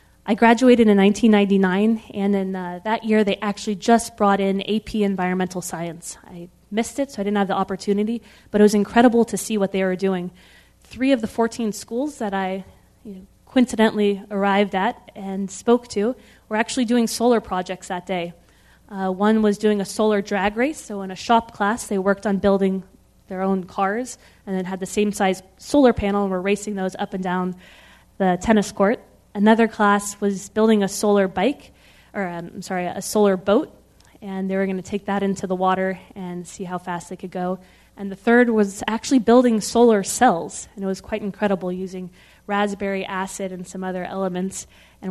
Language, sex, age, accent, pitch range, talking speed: English, female, 20-39, American, 190-220 Hz, 195 wpm